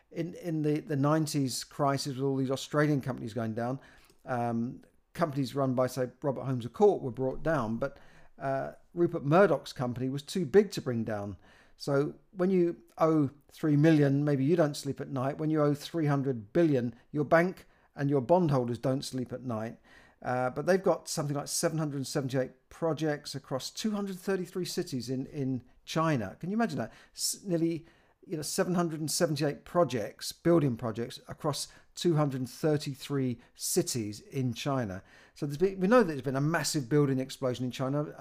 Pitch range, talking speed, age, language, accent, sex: 130-155 Hz, 170 wpm, 50-69, English, British, male